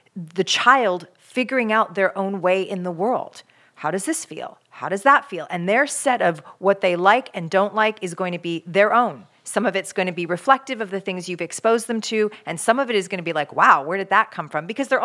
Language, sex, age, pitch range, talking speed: English, female, 40-59, 170-215 Hz, 260 wpm